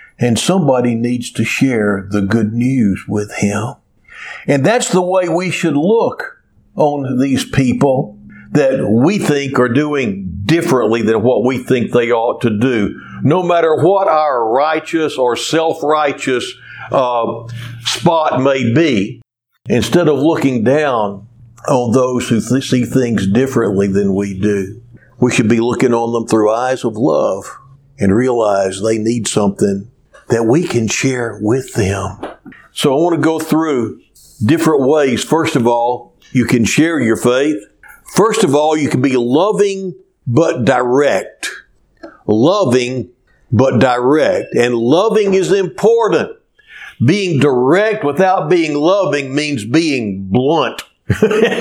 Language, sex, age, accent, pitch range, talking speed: English, male, 60-79, American, 115-155 Hz, 140 wpm